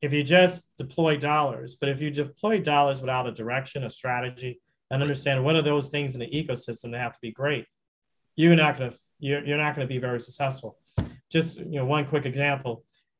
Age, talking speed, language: 40-59, 190 wpm, English